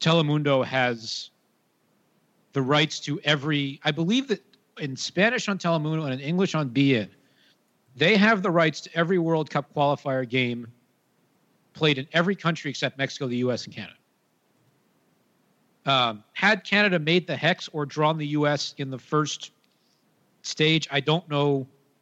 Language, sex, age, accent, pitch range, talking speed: English, male, 40-59, American, 130-155 Hz, 155 wpm